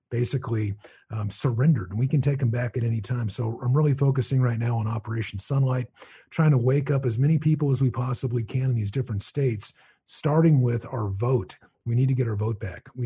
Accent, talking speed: American, 220 wpm